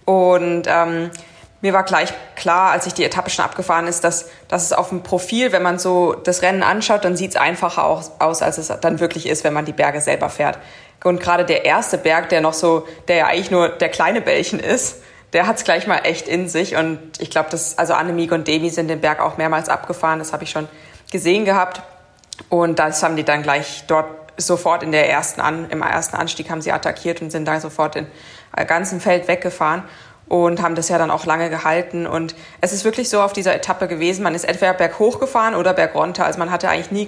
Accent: German